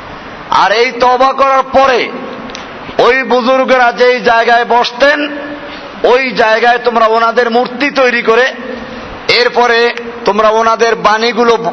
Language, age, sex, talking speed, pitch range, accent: Bengali, 50-69, male, 55 wpm, 225-250 Hz, native